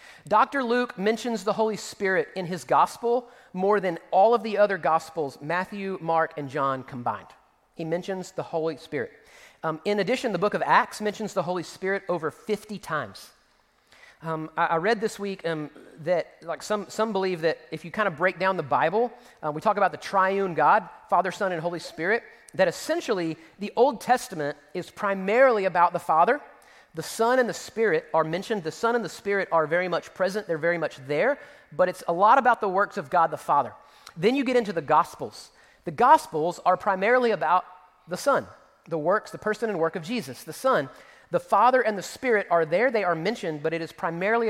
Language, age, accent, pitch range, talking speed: English, 40-59, American, 165-220 Hz, 205 wpm